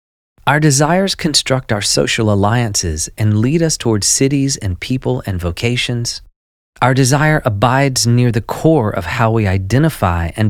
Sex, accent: male, American